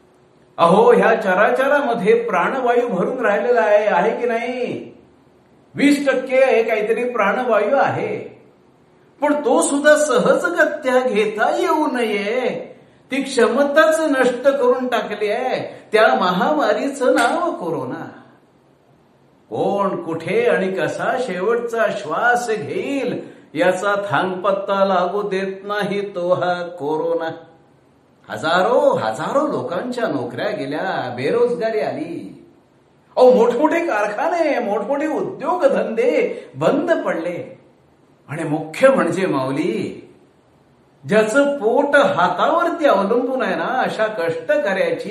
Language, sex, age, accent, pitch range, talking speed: Marathi, male, 60-79, native, 195-285 Hz, 95 wpm